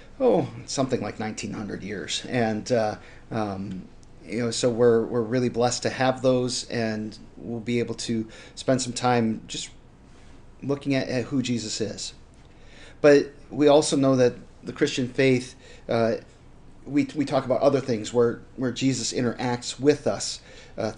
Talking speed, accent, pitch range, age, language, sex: 155 wpm, American, 110-125 Hz, 40-59, English, male